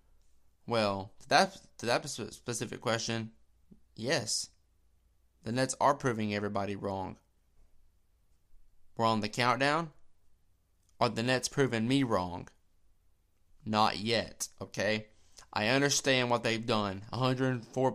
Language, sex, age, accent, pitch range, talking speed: English, male, 20-39, American, 100-130 Hz, 105 wpm